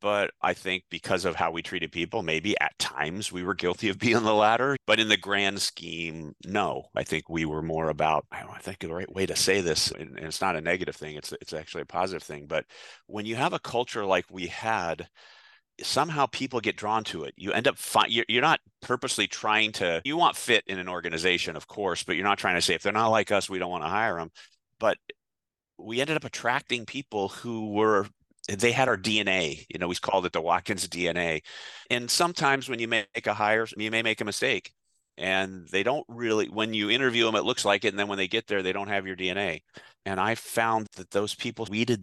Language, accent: English, American